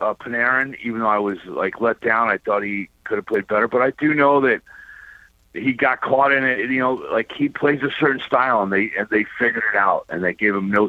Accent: American